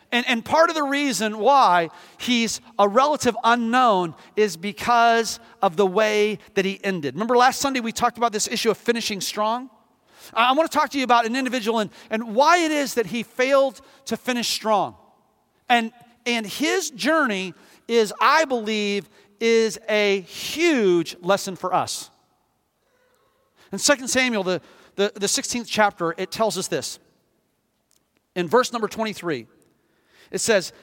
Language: English